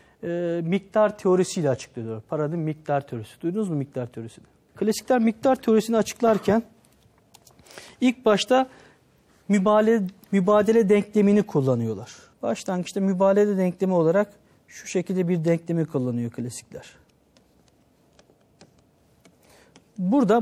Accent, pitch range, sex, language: native, 175-230 Hz, male, Turkish